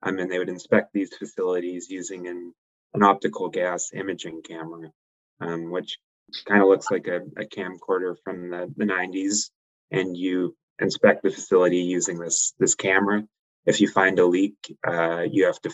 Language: English